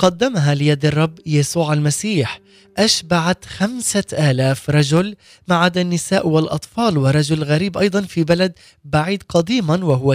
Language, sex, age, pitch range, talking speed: Arabic, male, 20-39, 145-185 Hz, 120 wpm